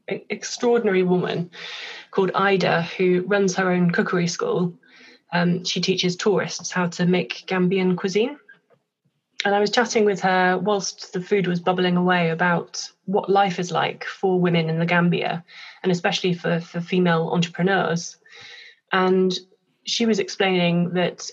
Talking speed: 145 wpm